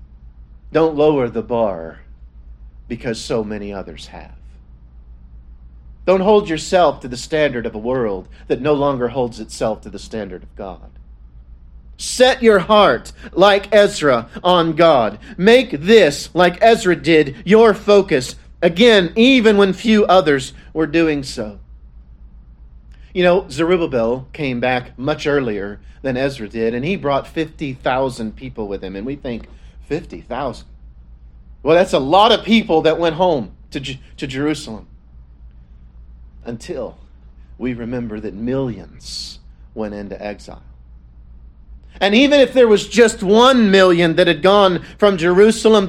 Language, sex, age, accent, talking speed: English, male, 40-59, American, 135 wpm